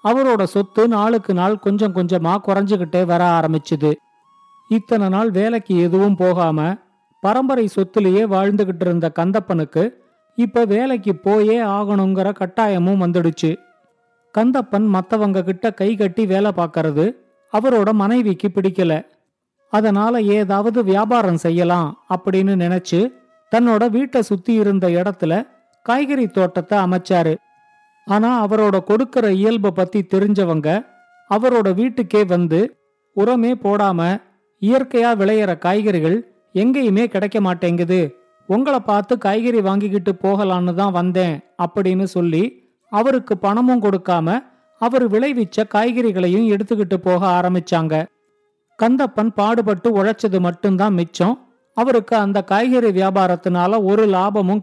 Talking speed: 105 wpm